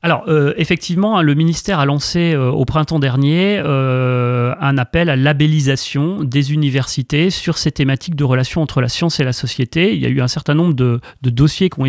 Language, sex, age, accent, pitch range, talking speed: French, male, 30-49, French, 130-155 Hz, 205 wpm